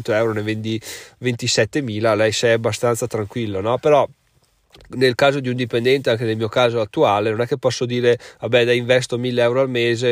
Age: 20-39